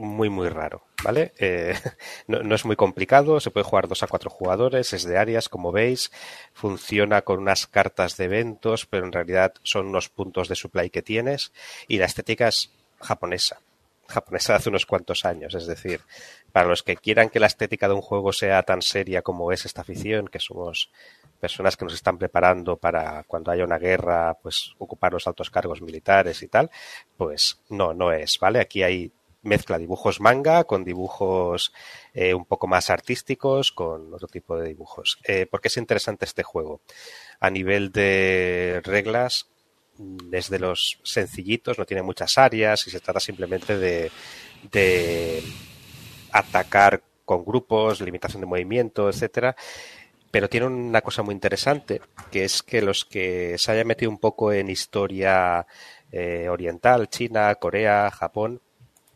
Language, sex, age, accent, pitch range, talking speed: Spanish, male, 30-49, Spanish, 90-115 Hz, 165 wpm